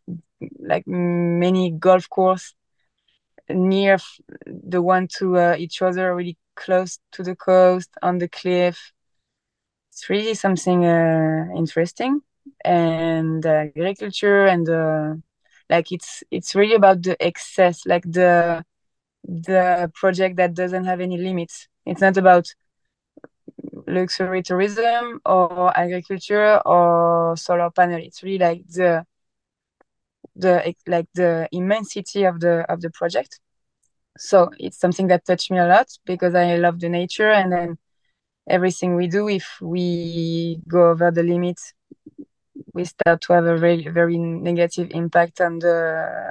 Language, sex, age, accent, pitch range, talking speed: English, female, 20-39, French, 170-190 Hz, 135 wpm